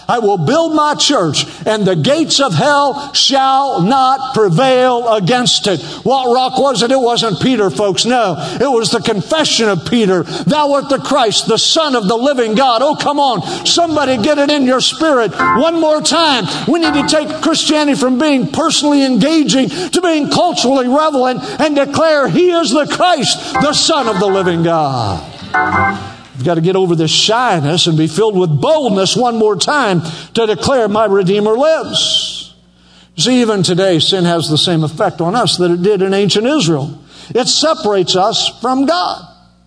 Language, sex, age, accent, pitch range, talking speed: English, male, 50-69, American, 180-285 Hz, 180 wpm